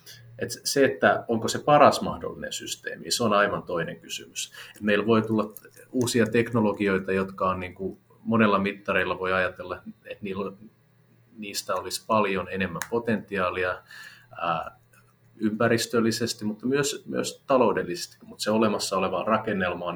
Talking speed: 130 wpm